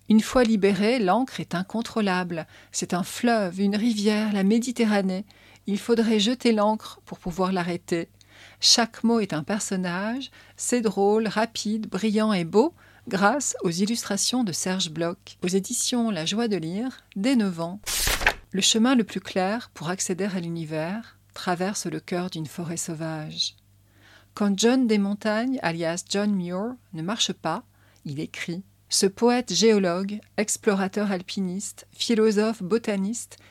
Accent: French